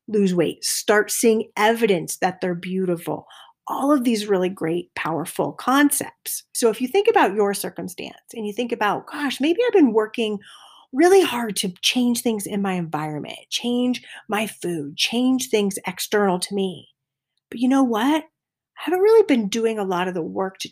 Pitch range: 185-255 Hz